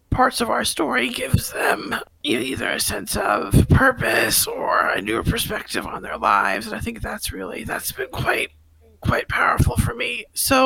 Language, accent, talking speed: English, American, 175 wpm